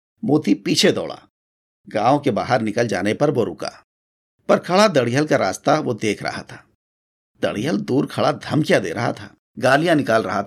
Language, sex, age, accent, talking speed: Hindi, male, 50-69, native, 165 wpm